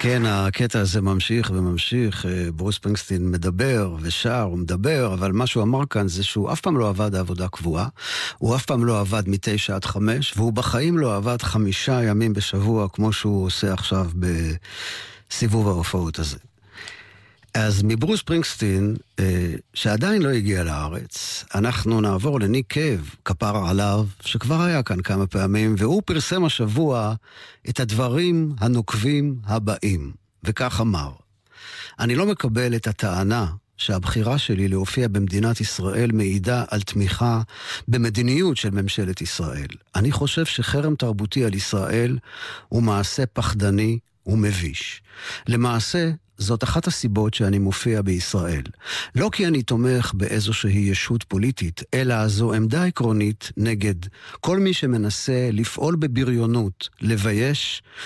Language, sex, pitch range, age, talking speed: Hebrew, male, 100-125 Hz, 50-69, 130 wpm